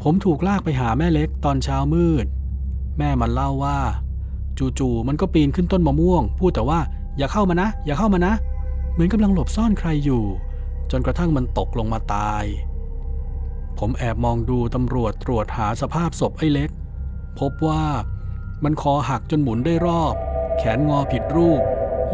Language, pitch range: Thai, 105-145 Hz